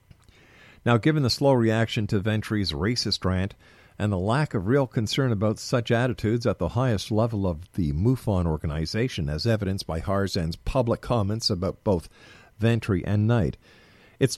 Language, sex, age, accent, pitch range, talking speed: English, male, 50-69, American, 95-125 Hz, 160 wpm